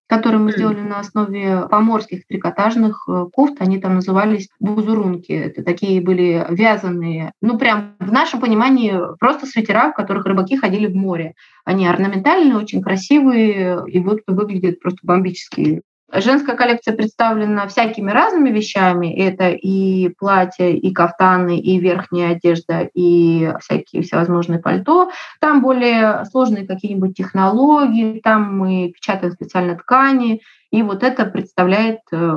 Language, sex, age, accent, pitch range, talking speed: Russian, female, 20-39, native, 180-225 Hz, 130 wpm